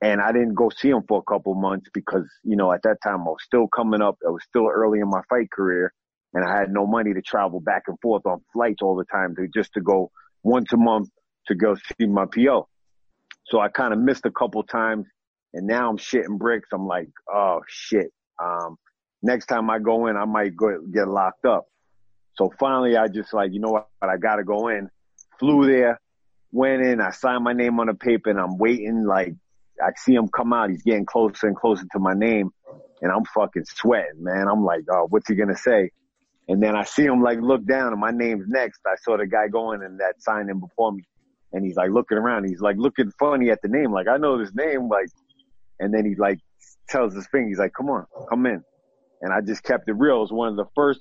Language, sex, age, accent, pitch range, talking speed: English, male, 30-49, American, 95-120 Hz, 240 wpm